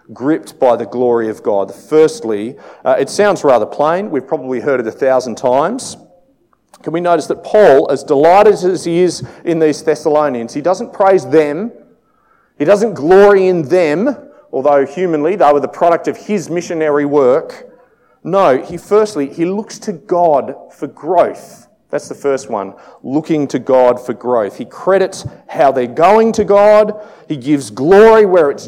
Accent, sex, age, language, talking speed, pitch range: Australian, male, 40-59, English, 170 wpm, 140-205 Hz